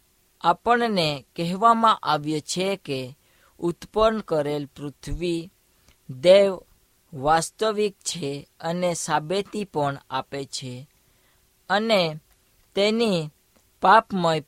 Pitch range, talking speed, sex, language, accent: 145-195 Hz, 45 wpm, female, Hindi, native